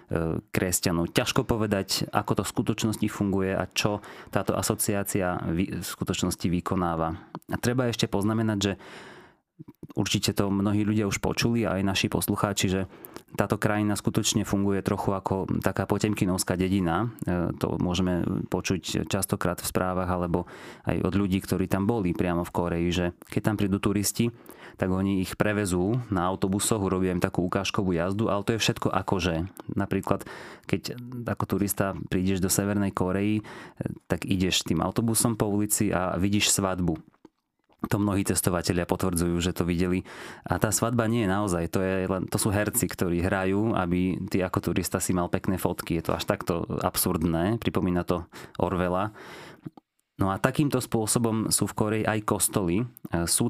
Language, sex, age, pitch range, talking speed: Slovak, male, 20-39, 90-105 Hz, 155 wpm